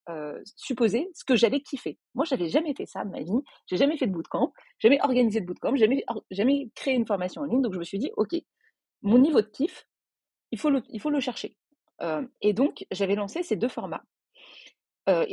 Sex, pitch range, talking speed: female, 190-270 Hz, 225 wpm